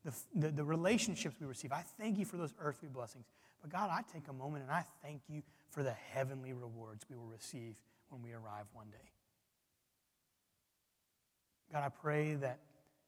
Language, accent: English, American